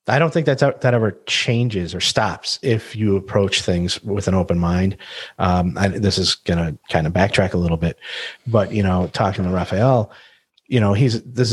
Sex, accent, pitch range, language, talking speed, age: male, American, 90-115 Hz, English, 205 wpm, 30-49